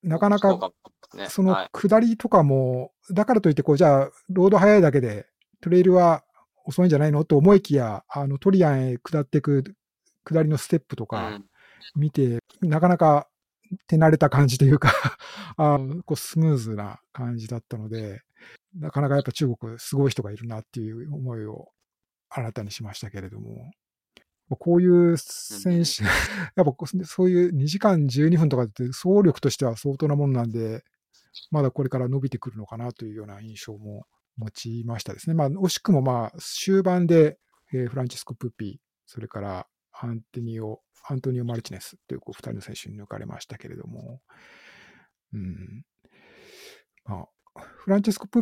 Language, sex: Japanese, male